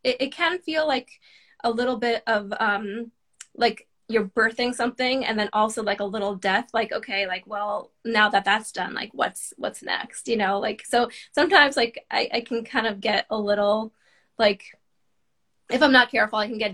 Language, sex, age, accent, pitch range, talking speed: English, female, 20-39, American, 205-235 Hz, 195 wpm